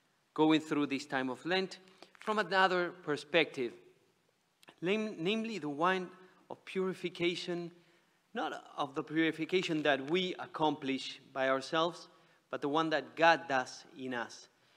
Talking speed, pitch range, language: 125 wpm, 145-190 Hz, English